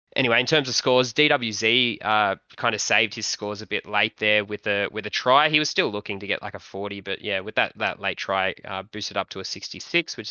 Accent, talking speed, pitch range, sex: Australian, 255 wpm, 100-115 Hz, male